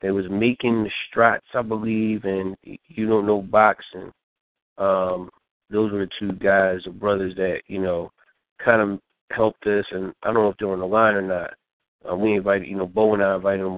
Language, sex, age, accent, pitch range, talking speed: English, male, 30-49, American, 95-115 Hz, 210 wpm